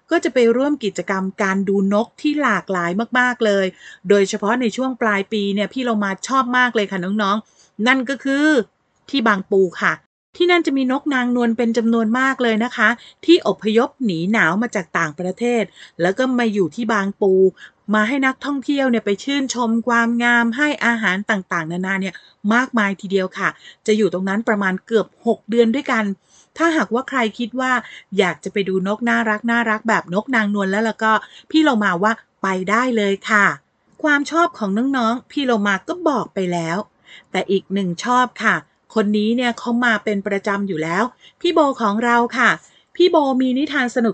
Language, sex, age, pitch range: Thai, female, 30-49, 200-260 Hz